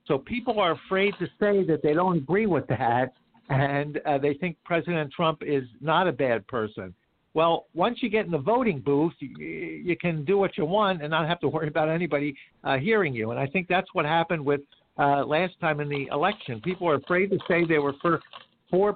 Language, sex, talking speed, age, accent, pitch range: English, male, 220 wpm, 60-79, American, 135-175 Hz